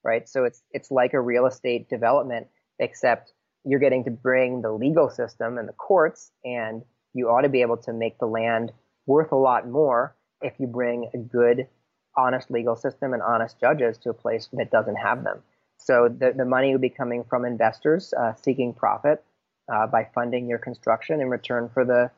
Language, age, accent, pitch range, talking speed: English, 30-49, American, 120-135 Hz, 195 wpm